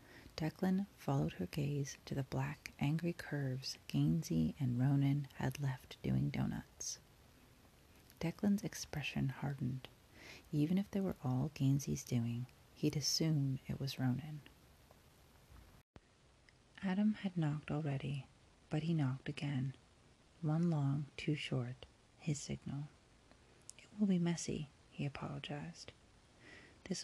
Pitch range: 130-170 Hz